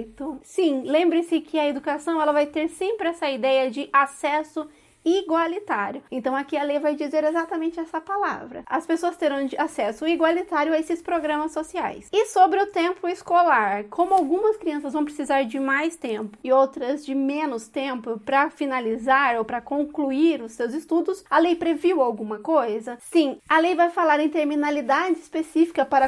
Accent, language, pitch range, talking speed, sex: Brazilian, Portuguese, 275-335 Hz, 165 wpm, female